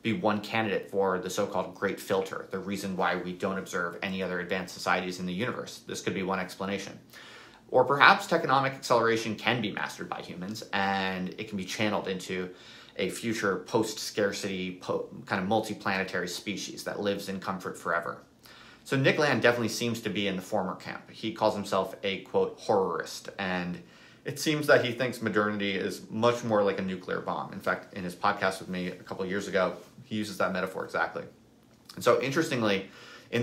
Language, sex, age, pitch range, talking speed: English, male, 30-49, 95-120 Hz, 185 wpm